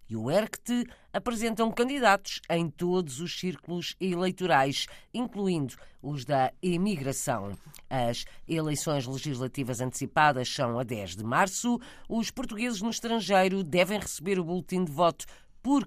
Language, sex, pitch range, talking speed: Portuguese, female, 145-210 Hz, 130 wpm